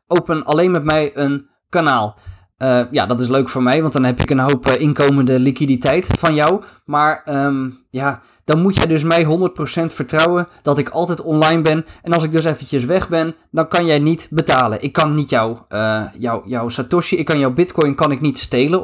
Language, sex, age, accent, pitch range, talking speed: Dutch, male, 20-39, Dutch, 130-160 Hz, 215 wpm